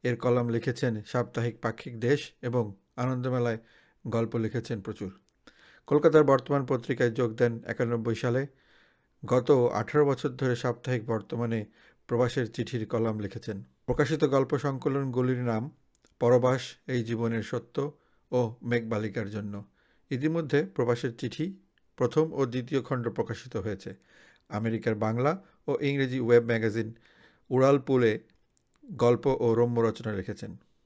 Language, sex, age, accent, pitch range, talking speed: Bengali, male, 50-69, native, 115-130 Hz, 120 wpm